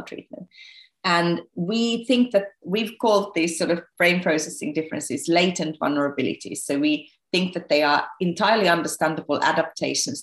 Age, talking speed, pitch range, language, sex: 30-49, 140 wpm, 140-170 Hz, English, female